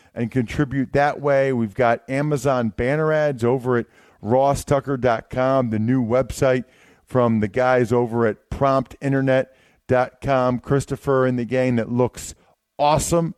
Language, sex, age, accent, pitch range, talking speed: English, male, 40-59, American, 120-165 Hz, 125 wpm